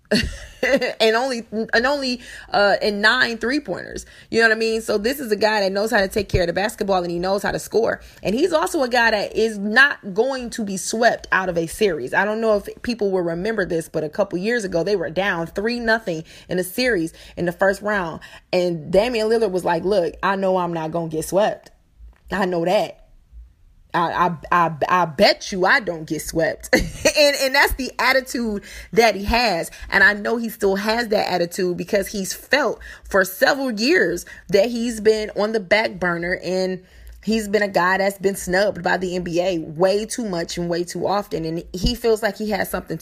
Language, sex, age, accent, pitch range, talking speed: English, female, 20-39, American, 180-225 Hz, 215 wpm